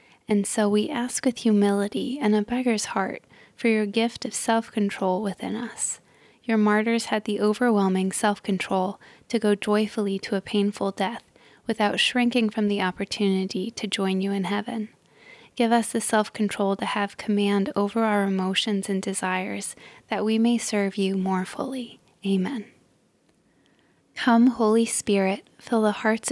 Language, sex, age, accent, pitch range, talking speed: English, female, 10-29, American, 195-225 Hz, 150 wpm